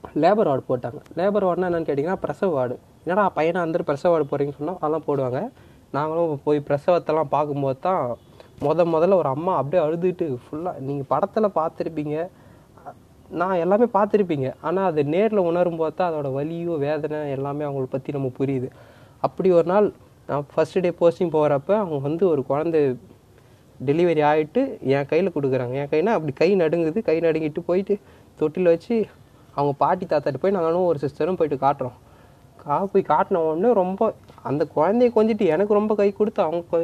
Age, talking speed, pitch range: 20-39, 160 wpm, 140-175 Hz